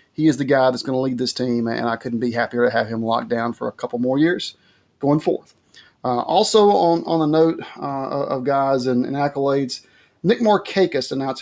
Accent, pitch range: American, 130-150 Hz